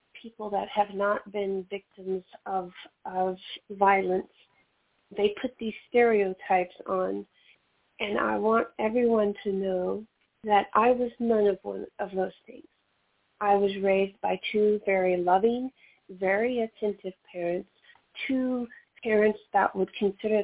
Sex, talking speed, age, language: female, 130 wpm, 30-49, English